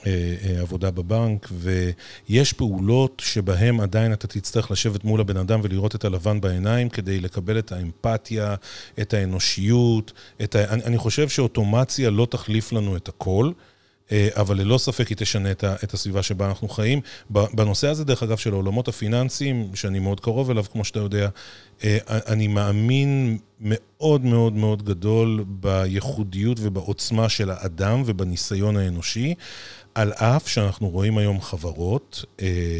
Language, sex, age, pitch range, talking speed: Hebrew, male, 40-59, 100-115 Hz, 135 wpm